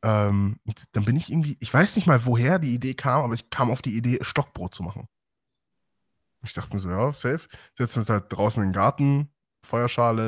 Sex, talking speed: male, 210 wpm